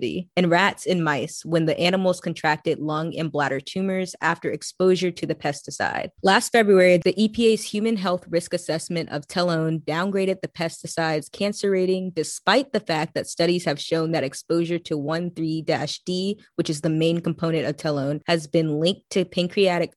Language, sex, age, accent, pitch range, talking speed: English, female, 20-39, American, 155-175 Hz, 165 wpm